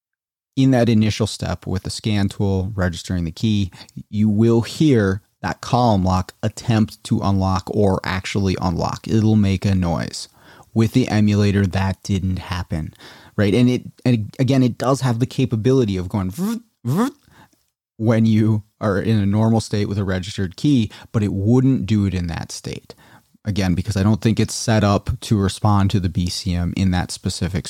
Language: English